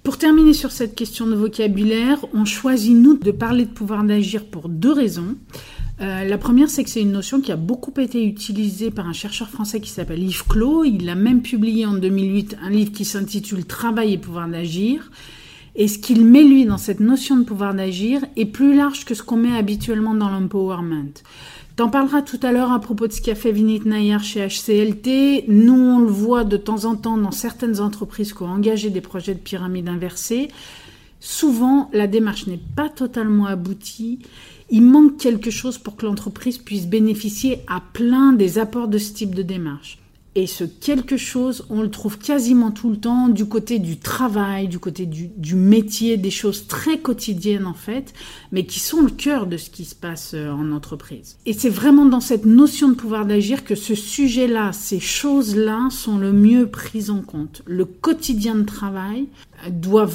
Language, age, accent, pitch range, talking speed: French, 40-59, French, 195-245 Hz, 200 wpm